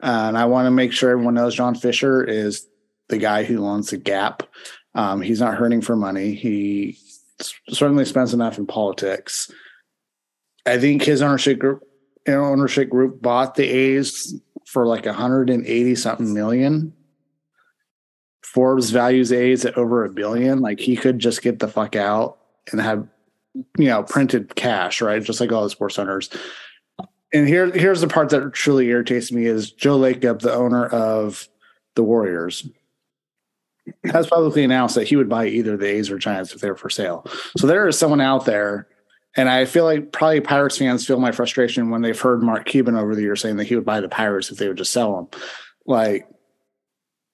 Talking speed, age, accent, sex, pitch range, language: 180 wpm, 30-49, American, male, 110-135 Hz, English